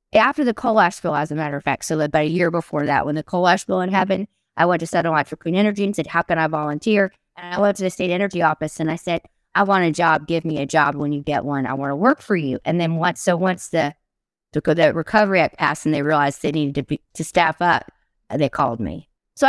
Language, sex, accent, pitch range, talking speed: English, female, American, 155-190 Hz, 275 wpm